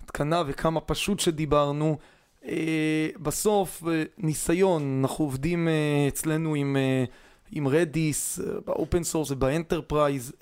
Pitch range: 150-175 Hz